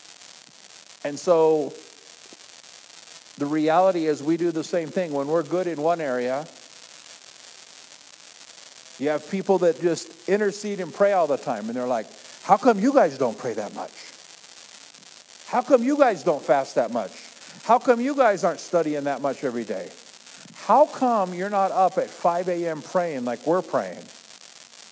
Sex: male